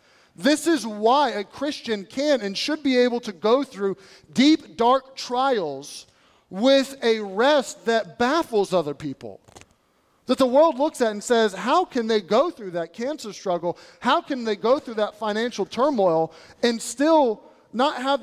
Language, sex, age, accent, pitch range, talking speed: English, male, 30-49, American, 200-265 Hz, 165 wpm